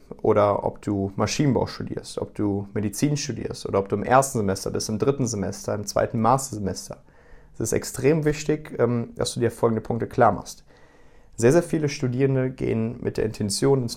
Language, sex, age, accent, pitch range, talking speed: German, male, 30-49, German, 105-125 Hz, 180 wpm